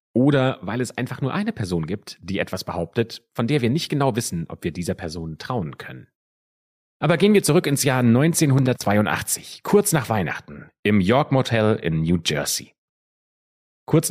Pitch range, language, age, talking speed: 90-125 Hz, German, 30-49, 170 wpm